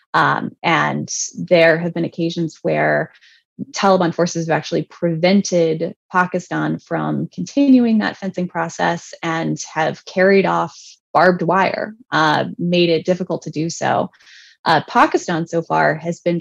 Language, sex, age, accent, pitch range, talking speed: English, female, 20-39, American, 155-180 Hz, 135 wpm